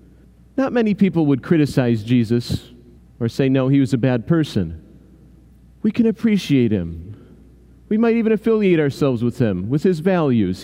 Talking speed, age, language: 160 wpm, 40-59, English